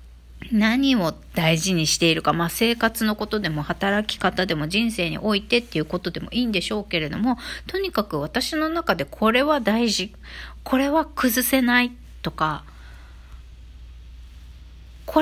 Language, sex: Japanese, female